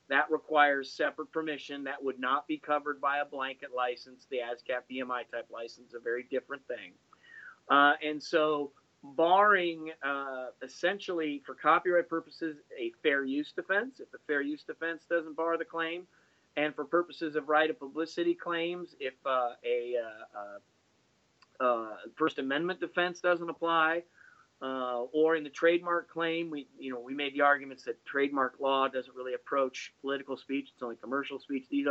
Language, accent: English, American